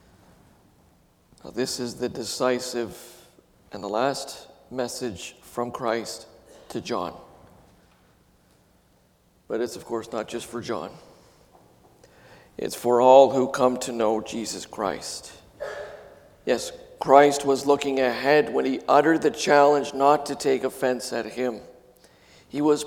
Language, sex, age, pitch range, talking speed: English, male, 50-69, 115-140 Hz, 125 wpm